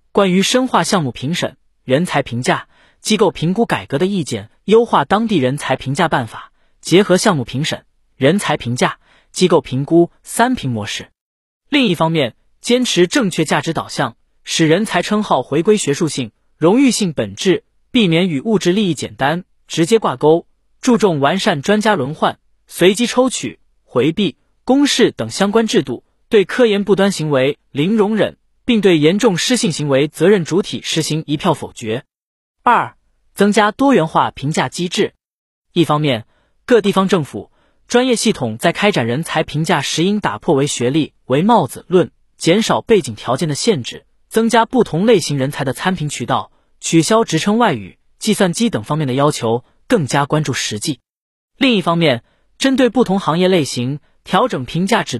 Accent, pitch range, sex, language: native, 140-215 Hz, male, Chinese